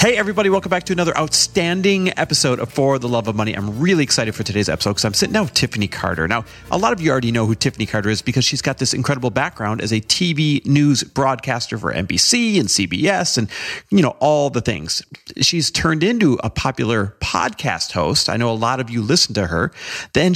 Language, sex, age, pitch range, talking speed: English, male, 40-59, 110-150 Hz, 225 wpm